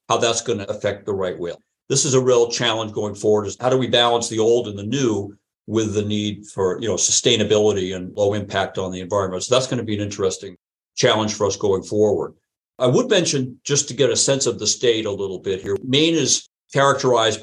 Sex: male